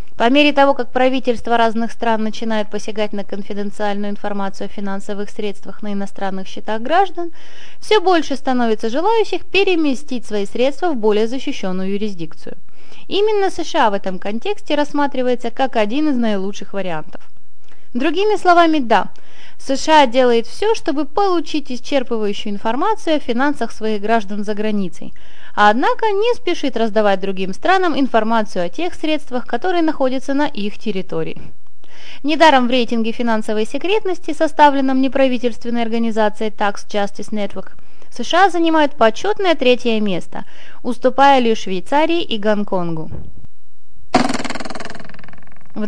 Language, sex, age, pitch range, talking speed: Russian, female, 20-39, 215-295 Hz, 125 wpm